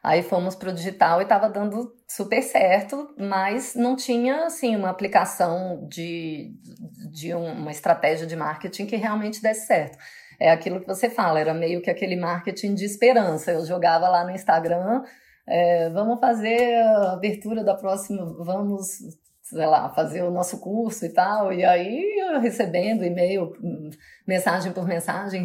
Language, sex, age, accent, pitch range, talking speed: Portuguese, female, 20-39, Brazilian, 175-240 Hz, 160 wpm